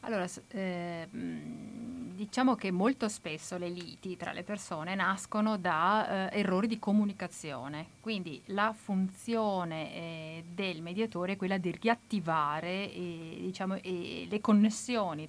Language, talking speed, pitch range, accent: Italian, 120 wpm, 175-215 Hz, native